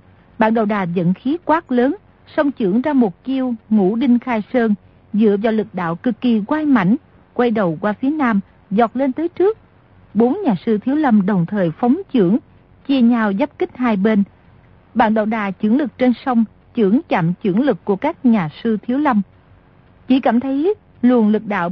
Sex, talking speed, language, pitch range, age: female, 195 wpm, Vietnamese, 205-260 Hz, 50-69